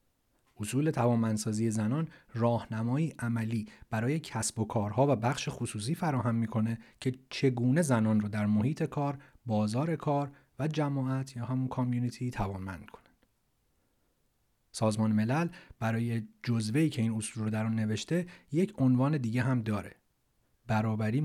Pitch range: 110-130 Hz